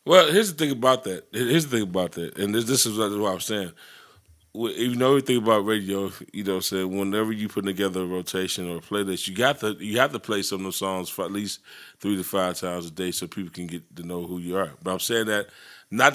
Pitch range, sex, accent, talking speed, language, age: 95-110 Hz, male, American, 260 wpm, English, 20-39